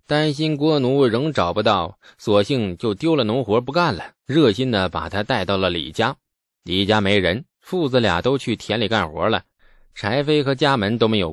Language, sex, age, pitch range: Chinese, male, 20-39, 100-150 Hz